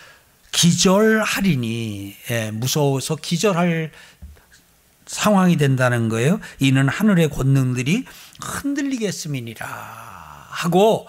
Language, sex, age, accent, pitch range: Korean, male, 60-79, native, 140-220 Hz